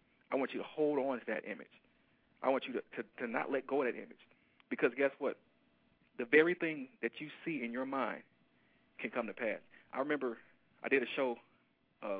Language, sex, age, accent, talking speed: English, male, 40-59, American, 215 wpm